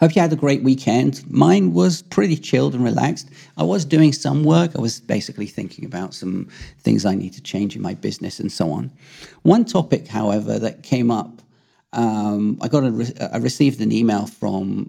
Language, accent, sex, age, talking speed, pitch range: English, British, male, 40-59, 200 wpm, 105-140 Hz